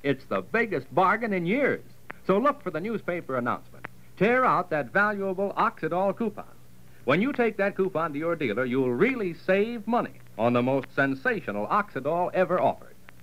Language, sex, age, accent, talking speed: English, male, 60-79, American, 170 wpm